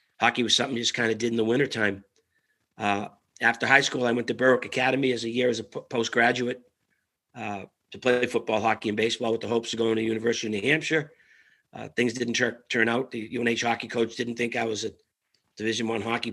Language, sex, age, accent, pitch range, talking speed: English, male, 40-59, American, 110-120 Hz, 230 wpm